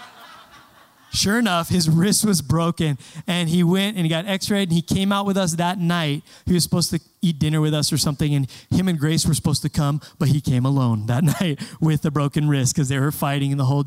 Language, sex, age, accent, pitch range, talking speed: English, male, 20-39, American, 130-165 Hz, 240 wpm